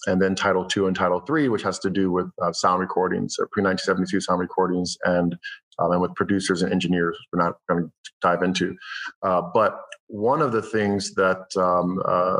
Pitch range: 90-105 Hz